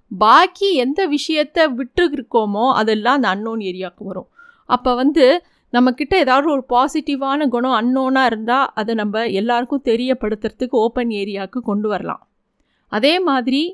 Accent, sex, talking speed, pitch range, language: native, female, 125 wpm, 225-285 Hz, Tamil